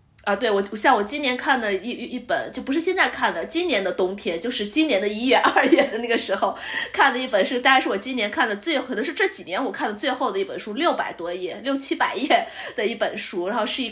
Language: Chinese